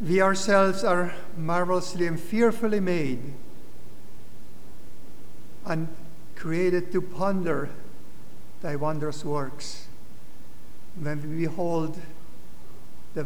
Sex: male